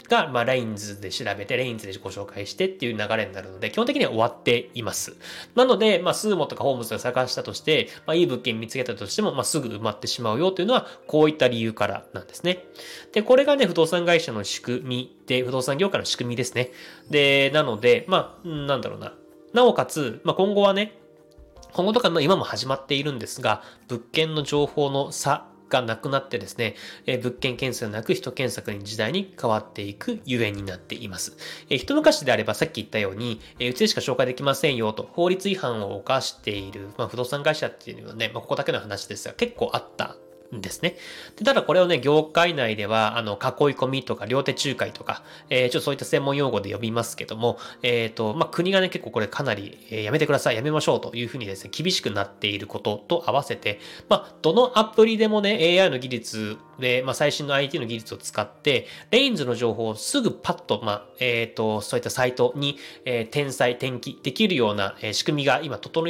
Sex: male